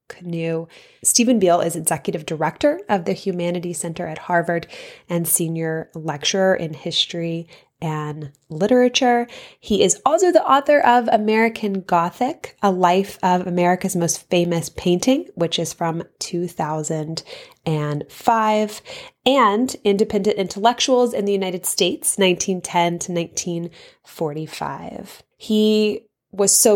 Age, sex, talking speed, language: 20-39, female, 115 wpm, English